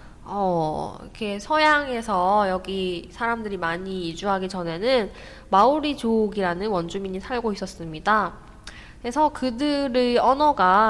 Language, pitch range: Korean, 190-245 Hz